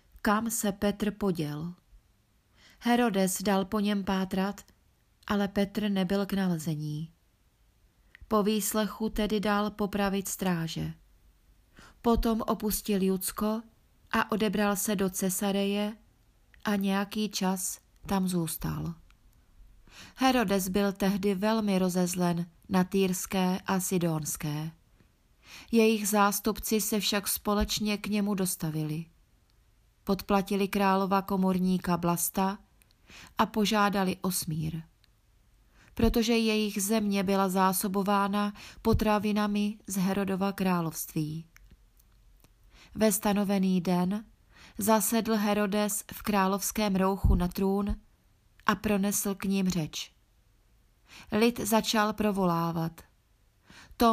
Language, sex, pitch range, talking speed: Czech, female, 180-210 Hz, 95 wpm